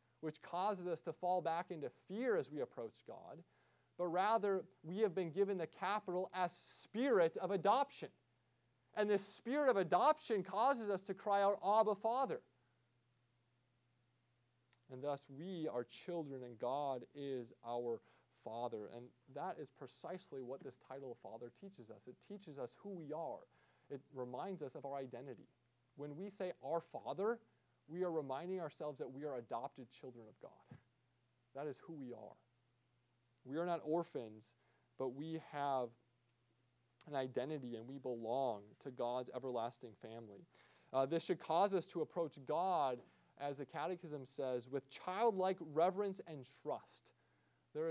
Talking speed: 155 wpm